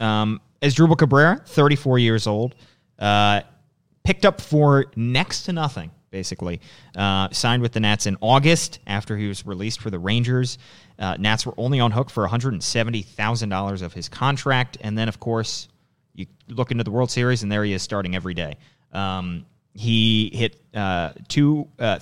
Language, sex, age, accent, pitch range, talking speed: English, male, 30-49, American, 100-125 Hz, 175 wpm